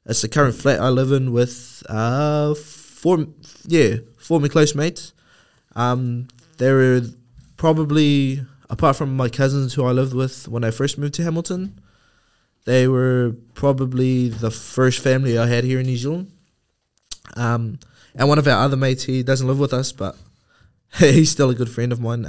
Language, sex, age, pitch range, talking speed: English, male, 20-39, 110-135 Hz, 180 wpm